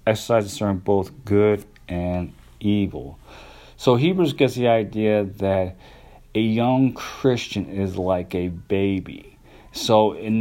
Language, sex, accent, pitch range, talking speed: English, male, American, 100-115 Hz, 115 wpm